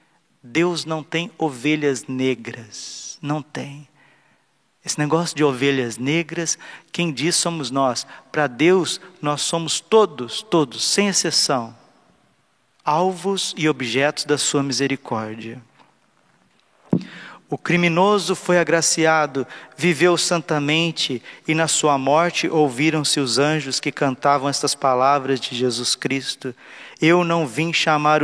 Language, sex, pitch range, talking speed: Portuguese, male, 130-160 Hz, 115 wpm